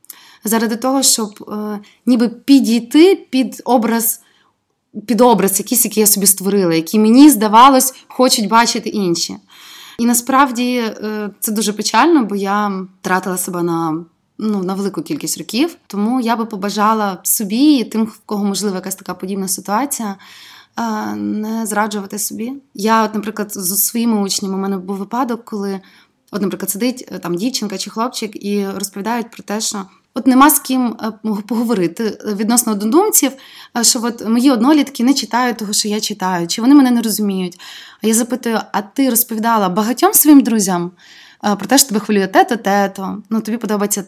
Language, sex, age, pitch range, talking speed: Ukrainian, female, 20-39, 200-245 Hz, 165 wpm